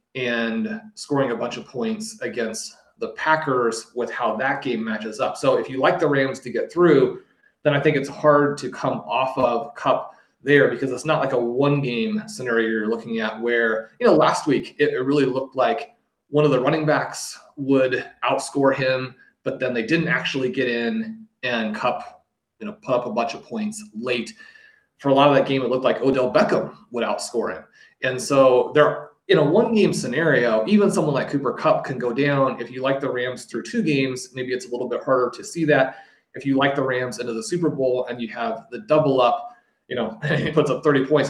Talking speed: 220 wpm